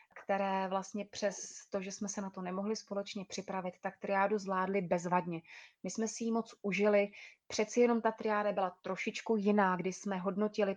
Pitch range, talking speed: 185-215 Hz, 180 wpm